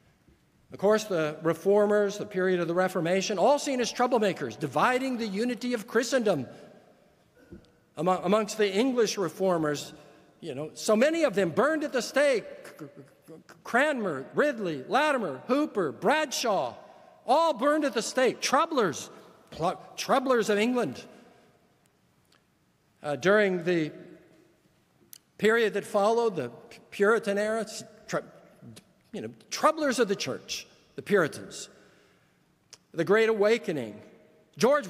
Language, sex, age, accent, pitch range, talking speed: English, male, 60-79, American, 180-250 Hz, 120 wpm